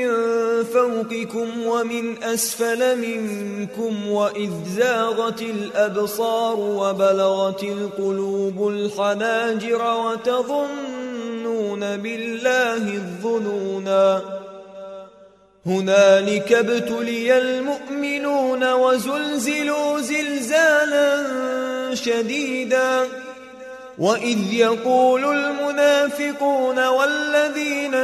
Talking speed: 50 wpm